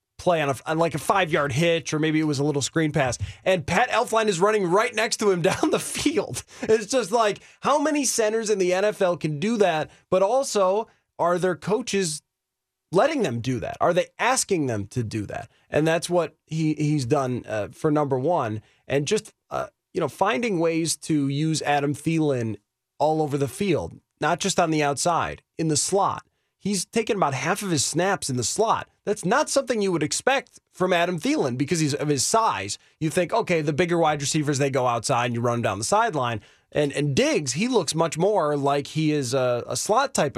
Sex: male